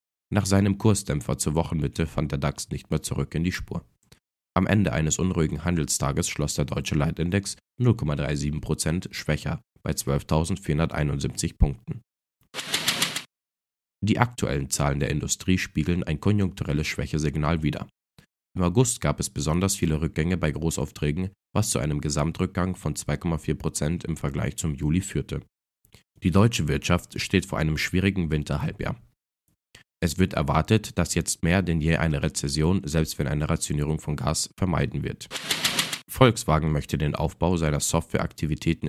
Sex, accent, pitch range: male, German, 75-90 Hz